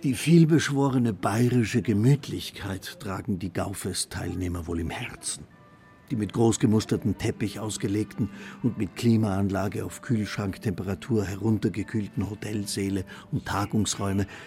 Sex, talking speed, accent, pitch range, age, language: male, 100 wpm, German, 100-125 Hz, 50-69, German